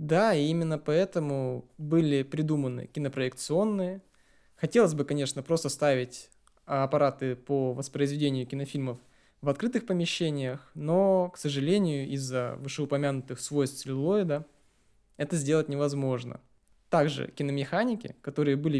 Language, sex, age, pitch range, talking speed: Russian, male, 20-39, 135-165 Hz, 105 wpm